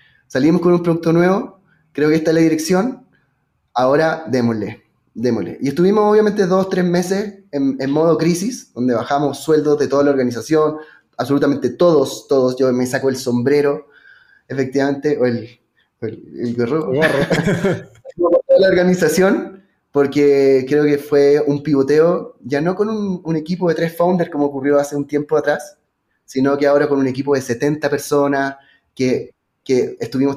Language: Spanish